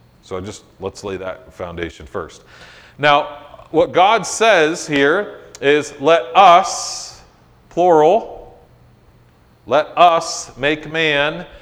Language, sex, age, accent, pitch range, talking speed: English, male, 40-59, American, 125-170 Hz, 105 wpm